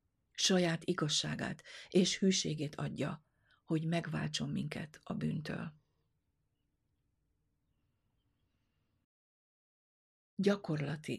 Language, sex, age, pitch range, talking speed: Hungarian, female, 50-69, 150-180 Hz, 60 wpm